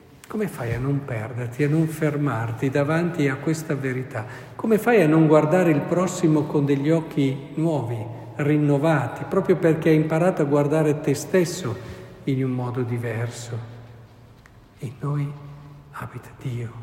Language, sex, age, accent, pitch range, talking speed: Italian, male, 50-69, native, 125-155 Hz, 145 wpm